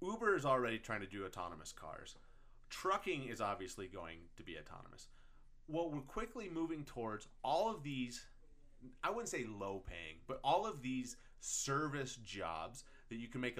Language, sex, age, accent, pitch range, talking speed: English, male, 30-49, American, 115-155 Hz, 170 wpm